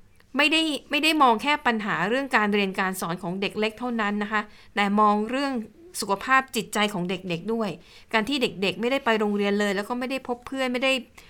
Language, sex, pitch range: Thai, female, 190-235 Hz